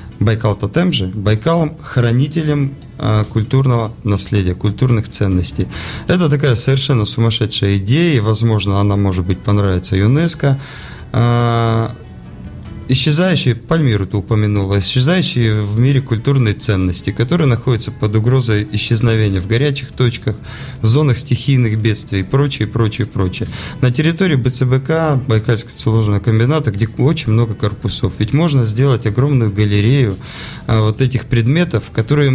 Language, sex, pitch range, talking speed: Russian, male, 105-135 Hz, 115 wpm